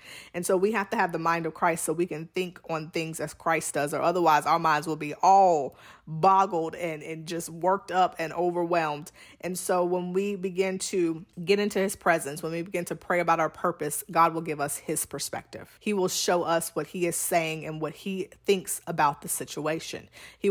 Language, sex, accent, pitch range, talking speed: English, female, American, 165-195 Hz, 215 wpm